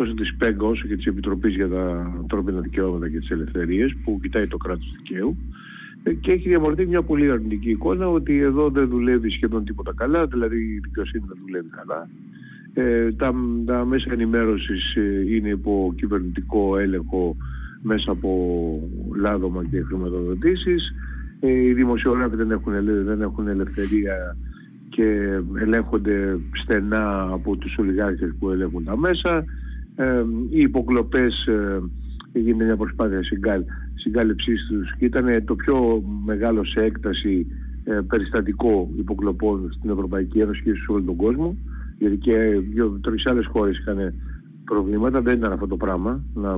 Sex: male